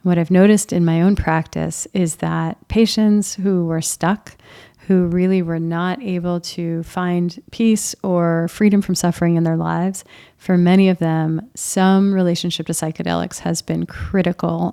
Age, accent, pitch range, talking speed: 30-49, American, 170-190 Hz, 160 wpm